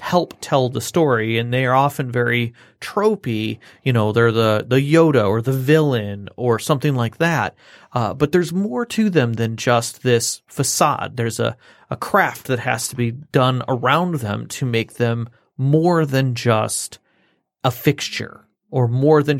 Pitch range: 120-145 Hz